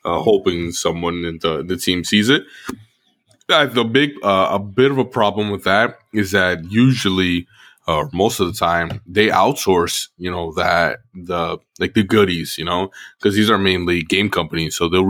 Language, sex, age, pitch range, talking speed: English, male, 20-39, 85-100 Hz, 185 wpm